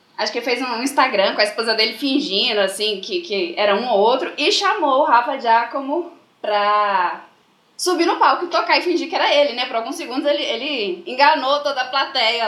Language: Portuguese